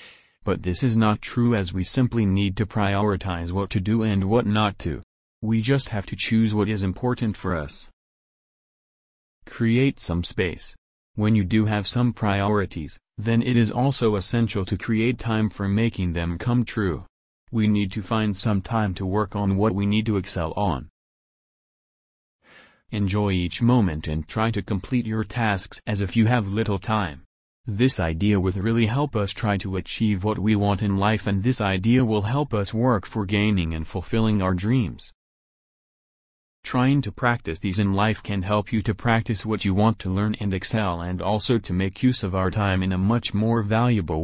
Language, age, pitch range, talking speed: English, 30-49, 95-110 Hz, 185 wpm